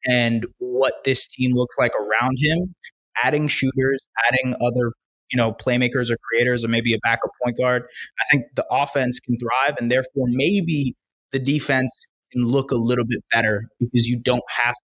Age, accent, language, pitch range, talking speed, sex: 20-39, American, English, 115-135 Hz, 180 wpm, male